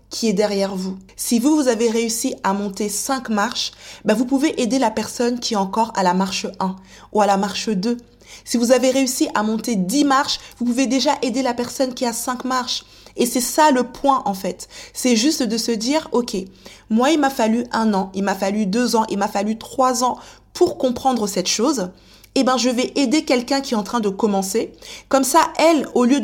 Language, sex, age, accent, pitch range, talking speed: French, female, 20-39, French, 210-265 Hz, 230 wpm